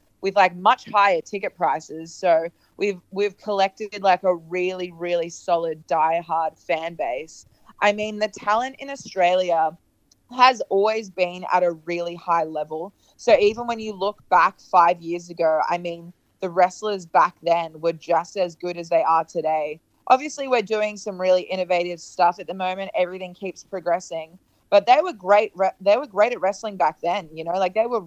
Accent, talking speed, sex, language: Australian, 180 wpm, female, English